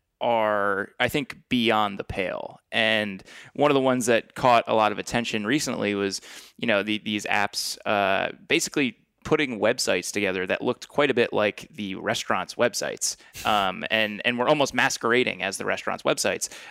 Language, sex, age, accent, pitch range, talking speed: English, male, 20-39, American, 100-120 Hz, 170 wpm